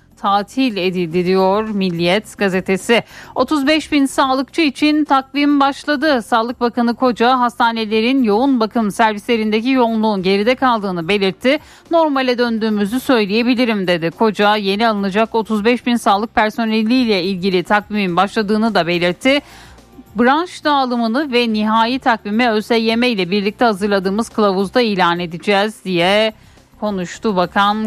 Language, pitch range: Turkish, 205-260 Hz